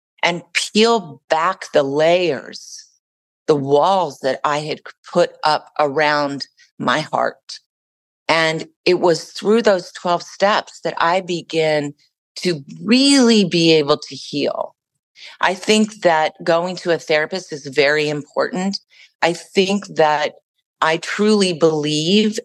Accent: American